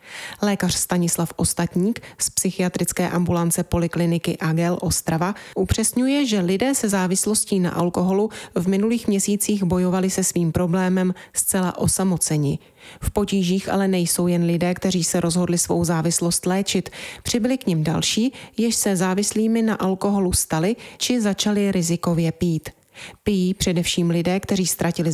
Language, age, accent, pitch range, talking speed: Czech, 30-49, native, 170-205 Hz, 135 wpm